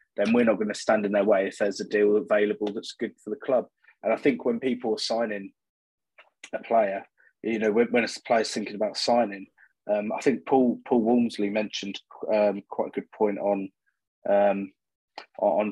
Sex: male